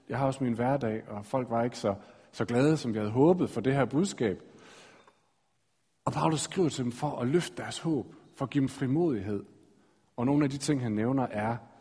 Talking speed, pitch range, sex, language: 220 wpm, 110-140 Hz, male, Danish